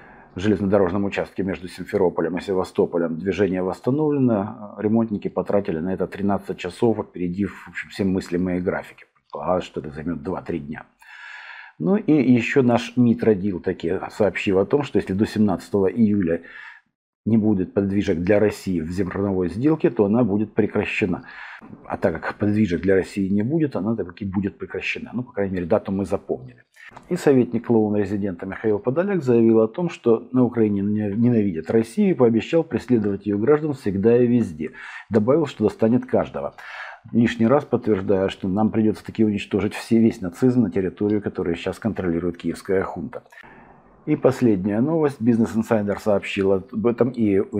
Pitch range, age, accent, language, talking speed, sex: 95-115 Hz, 50-69, native, Russian, 155 wpm, male